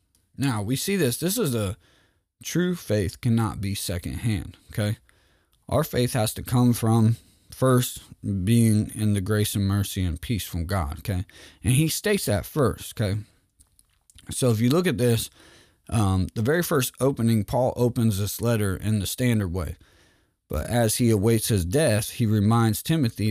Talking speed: 170 wpm